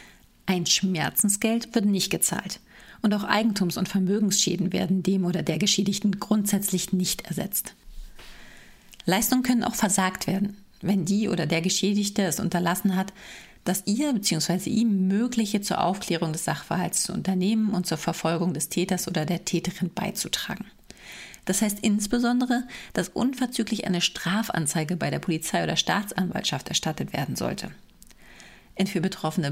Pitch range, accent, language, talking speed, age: 180-210 Hz, German, German, 140 wpm, 40-59